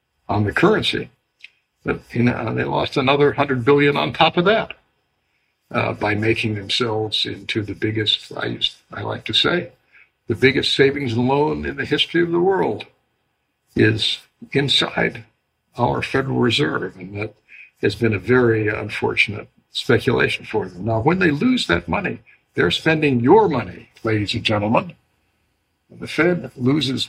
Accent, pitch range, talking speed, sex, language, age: American, 110-140 Hz, 155 wpm, male, English, 60-79